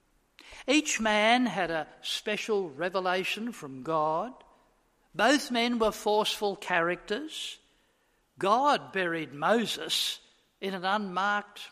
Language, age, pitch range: English, 60-79, 165-215 Hz